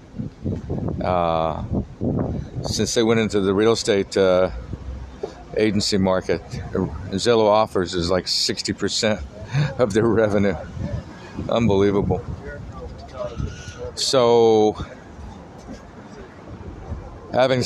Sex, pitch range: male, 90-115 Hz